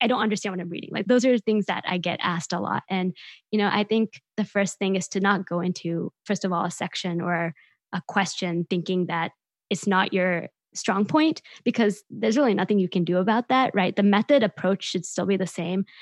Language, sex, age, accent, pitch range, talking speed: English, female, 20-39, American, 185-220 Hz, 230 wpm